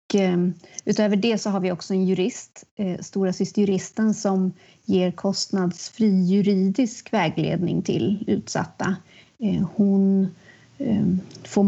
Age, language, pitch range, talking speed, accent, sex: 30-49, Swedish, 175-200 Hz, 100 wpm, native, female